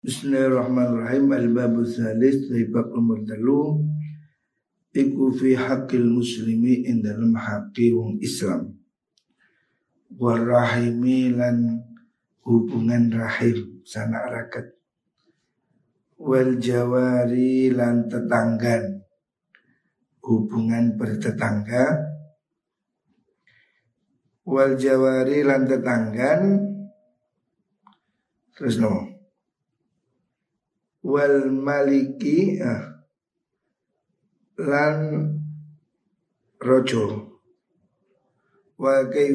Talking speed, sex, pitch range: 50 wpm, male, 120-150 Hz